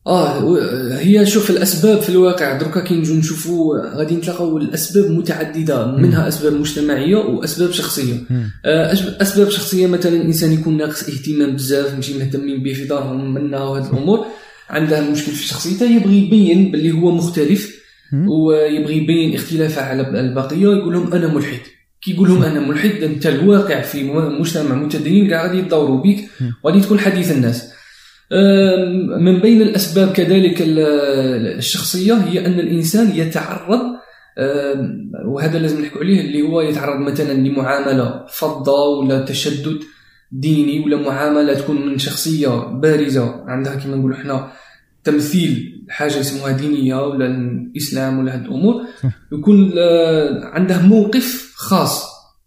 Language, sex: Arabic, male